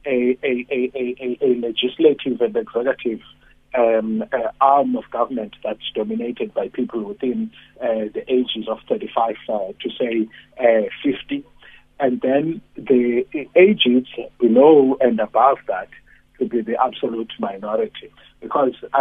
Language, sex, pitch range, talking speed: English, male, 120-150 Hz, 135 wpm